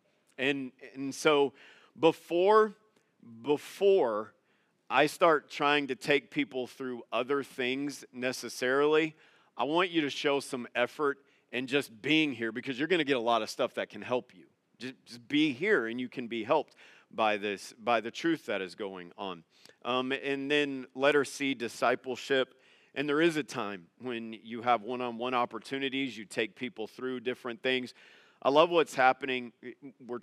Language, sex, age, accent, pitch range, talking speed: English, male, 40-59, American, 120-145 Hz, 170 wpm